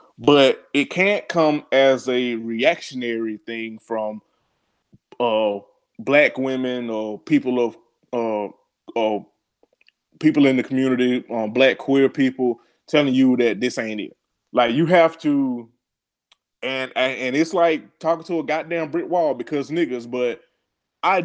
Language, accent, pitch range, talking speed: English, American, 115-155 Hz, 140 wpm